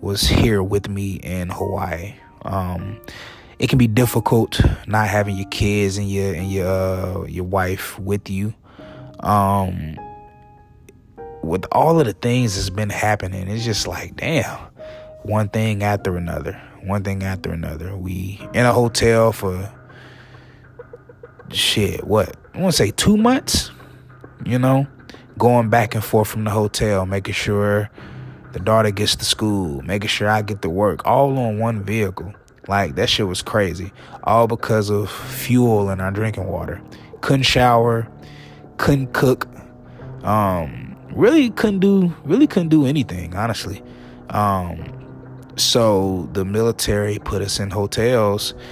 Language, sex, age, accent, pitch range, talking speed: English, male, 20-39, American, 95-120 Hz, 145 wpm